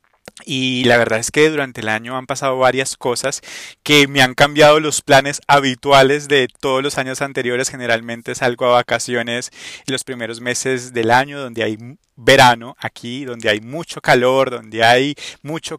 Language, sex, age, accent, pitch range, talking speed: Spanish, male, 30-49, Colombian, 120-140 Hz, 170 wpm